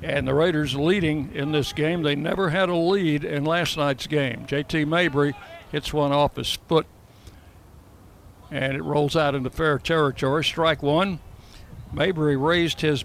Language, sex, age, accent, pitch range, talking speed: English, male, 60-79, American, 130-155 Hz, 160 wpm